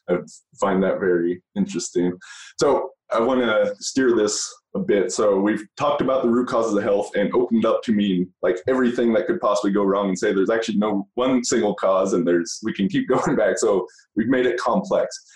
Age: 20-39